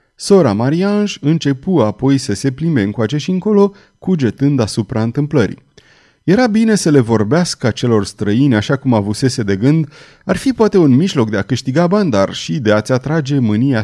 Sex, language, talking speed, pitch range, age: male, Romanian, 175 wpm, 110-165 Hz, 30-49